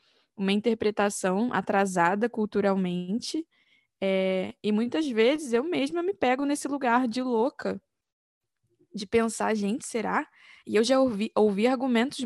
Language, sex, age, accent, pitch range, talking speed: Portuguese, female, 10-29, Brazilian, 200-240 Hz, 120 wpm